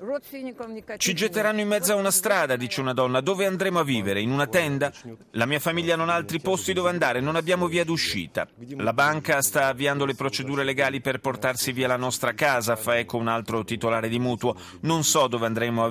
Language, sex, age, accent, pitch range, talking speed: Italian, male, 30-49, native, 110-150 Hz, 210 wpm